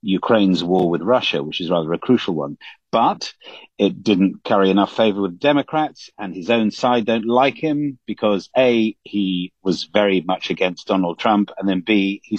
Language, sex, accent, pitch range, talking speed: English, male, British, 95-130 Hz, 185 wpm